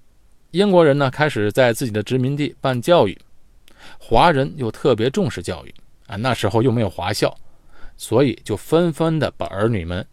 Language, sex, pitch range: Chinese, male, 100-140 Hz